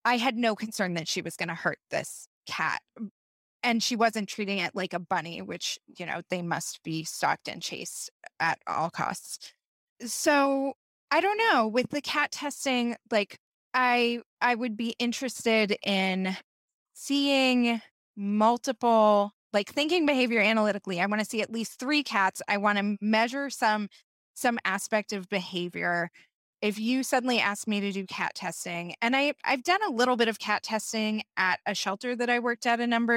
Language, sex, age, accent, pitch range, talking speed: English, female, 20-39, American, 190-235 Hz, 175 wpm